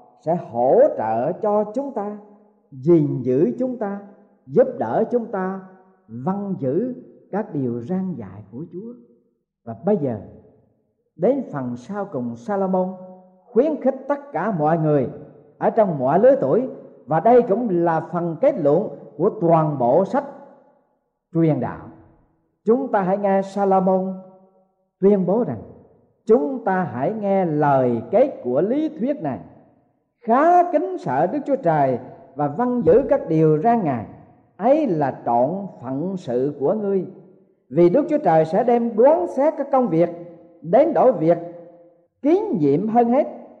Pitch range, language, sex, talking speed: 160-245 Hz, Vietnamese, male, 150 wpm